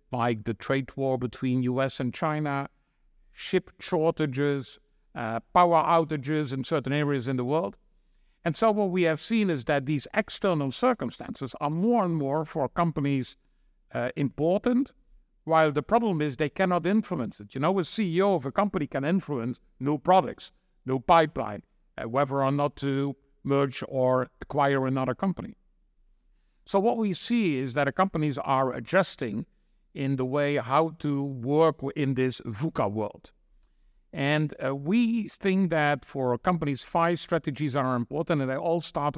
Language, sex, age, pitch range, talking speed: English, male, 60-79, 135-170 Hz, 160 wpm